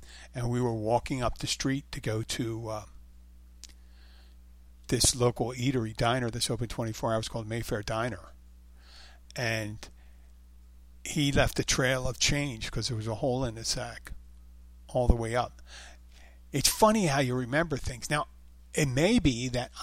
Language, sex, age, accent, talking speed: English, male, 50-69, American, 155 wpm